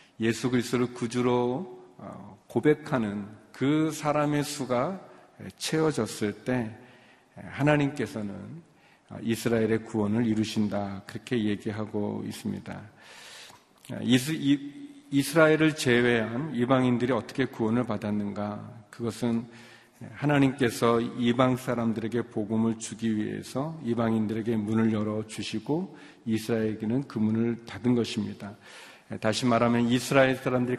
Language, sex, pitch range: Korean, male, 110-125 Hz